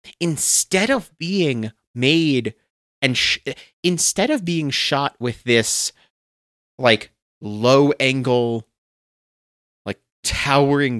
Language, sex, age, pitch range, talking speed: English, male, 30-49, 115-160 Hz, 85 wpm